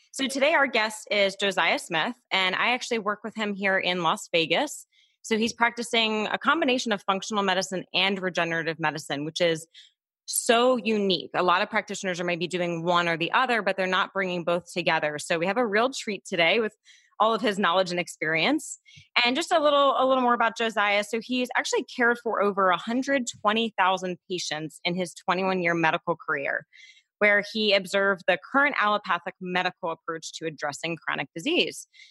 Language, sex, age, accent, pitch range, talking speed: English, female, 20-39, American, 175-235 Hz, 180 wpm